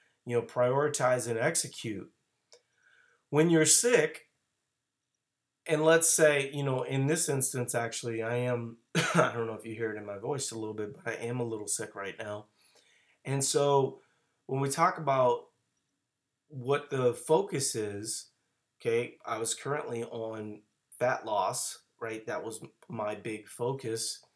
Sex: male